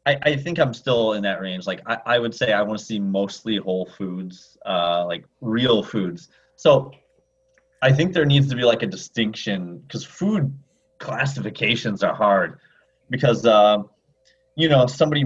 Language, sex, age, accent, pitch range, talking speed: English, male, 30-49, American, 105-140 Hz, 175 wpm